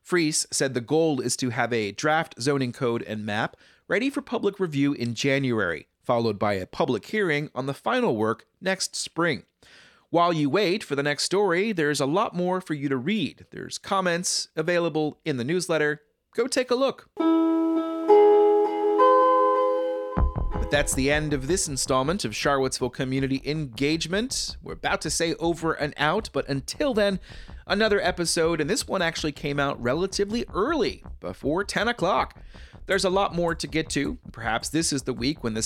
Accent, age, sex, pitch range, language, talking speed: American, 30-49, male, 140-195 Hz, English, 175 wpm